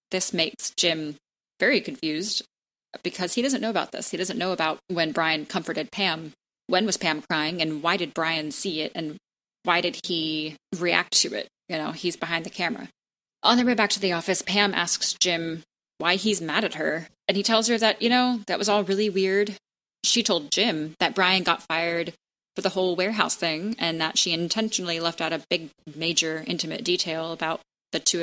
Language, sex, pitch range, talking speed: English, female, 165-200 Hz, 200 wpm